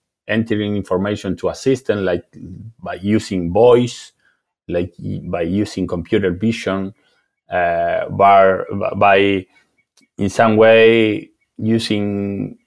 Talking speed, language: 100 wpm, English